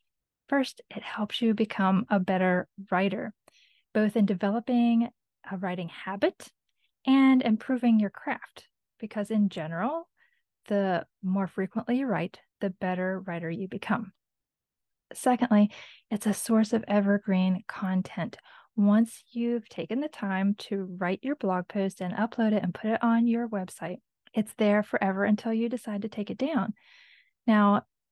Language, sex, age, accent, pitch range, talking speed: English, female, 20-39, American, 190-225 Hz, 145 wpm